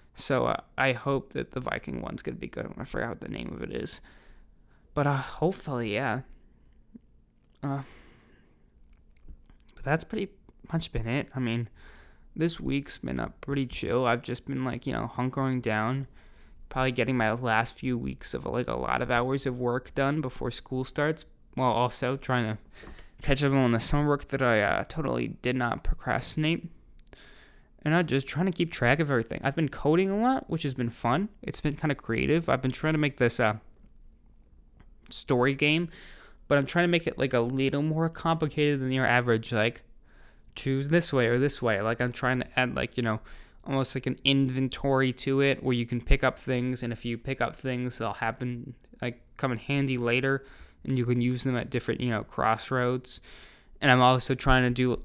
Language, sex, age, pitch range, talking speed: English, male, 20-39, 120-140 Hz, 200 wpm